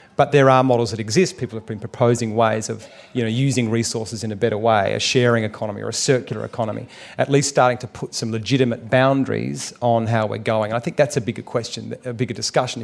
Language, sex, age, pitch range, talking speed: English, male, 40-59, 115-130 Hz, 220 wpm